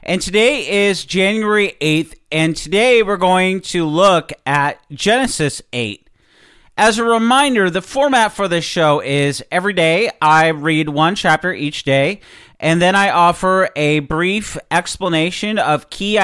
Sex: male